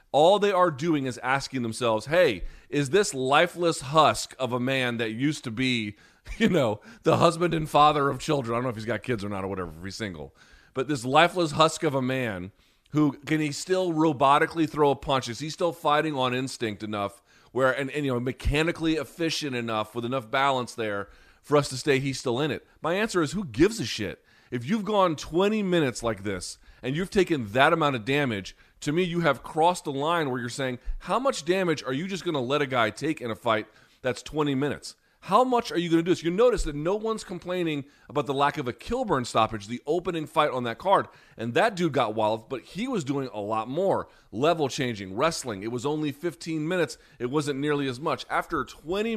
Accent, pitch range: American, 120-165 Hz